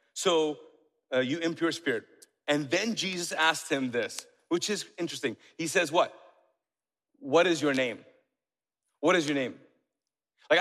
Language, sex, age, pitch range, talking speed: English, male, 40-59, 140-180 Hz, 145 wpm